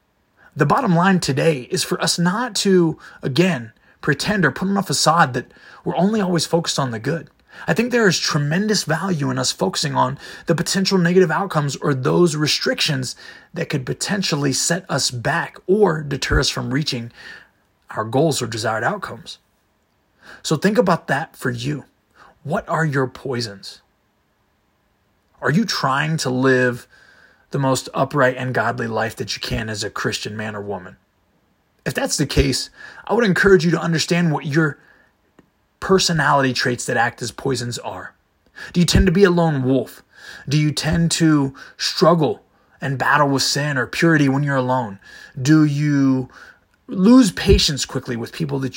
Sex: male